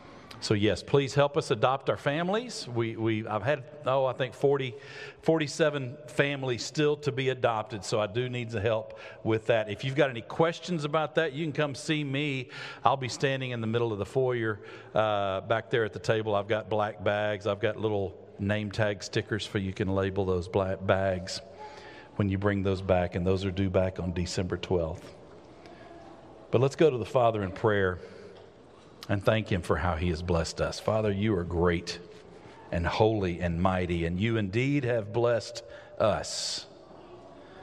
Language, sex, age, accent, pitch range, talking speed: English, male, 50-69, American, 100-135 Hz, 190 wpm